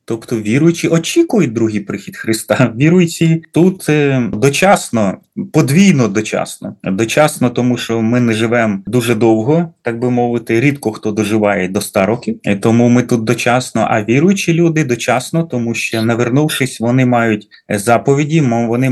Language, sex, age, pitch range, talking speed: Ukrainian, male, 20-39, 110-140 Hz, 140 wpm